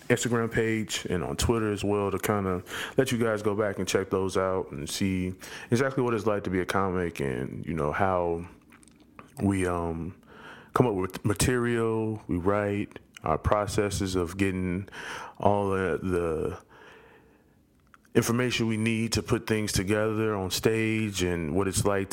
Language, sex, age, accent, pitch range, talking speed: English, male, 20-39, American, 95-110 Hz, 165 wpm